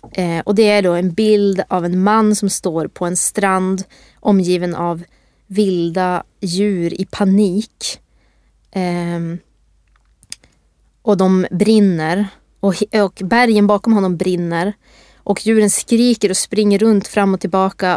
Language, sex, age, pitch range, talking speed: Swedish, female, 20-39, 180-210 Hz, 125 wpm